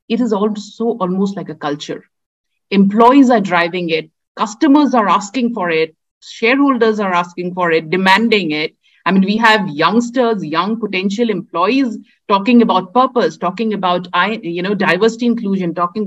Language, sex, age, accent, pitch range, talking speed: English, female, 50-69, Indian, 180-235 Hz, 155 wpm